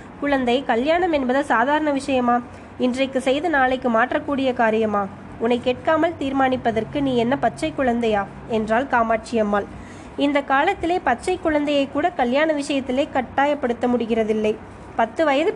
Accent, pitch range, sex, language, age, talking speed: native, 230-285 Hz, female, Tamil, 20-39, 110 wpm